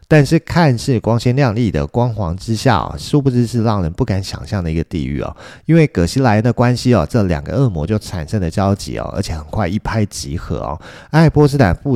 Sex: male